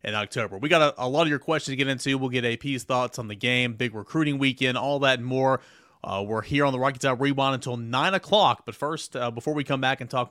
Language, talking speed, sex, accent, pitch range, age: English, 275 wpm, male, American, 125-160 Hz, 30-49